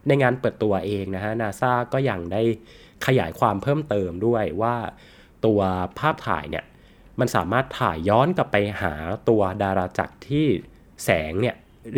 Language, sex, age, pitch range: Thai, male, 20-39, 95-125 Hz